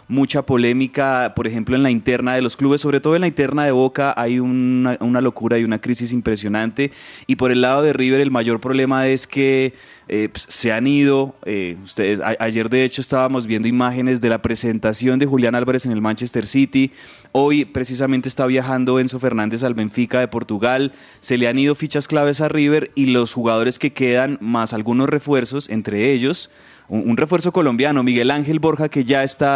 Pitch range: 115-140 Hz